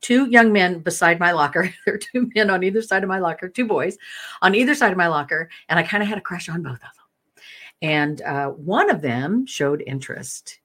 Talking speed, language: 235 wpm, English